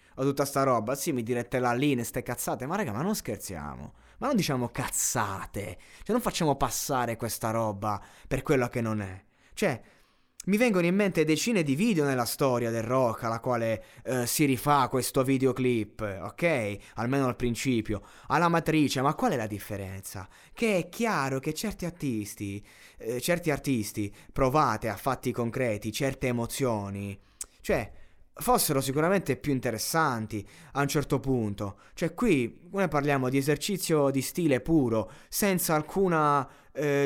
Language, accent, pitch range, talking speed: Italian, native, 115-160 Hz, 160 wpm